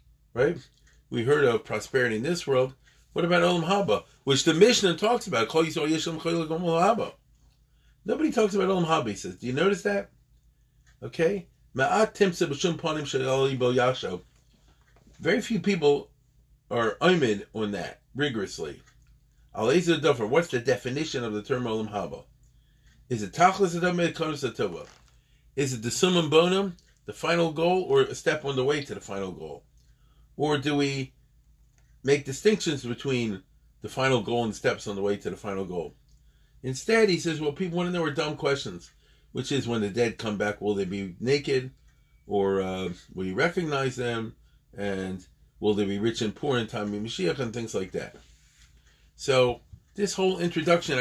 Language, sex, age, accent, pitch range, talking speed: English, male, 40-59, American, 110-165 Hz, 145 wpm